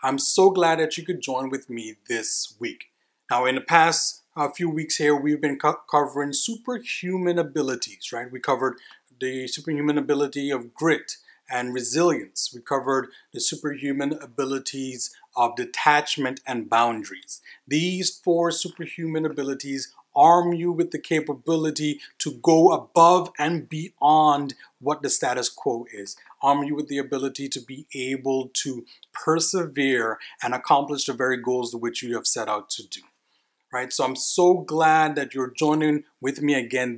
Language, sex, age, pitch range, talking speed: English, male, 30-49, 130-165 Hz, 155 wpm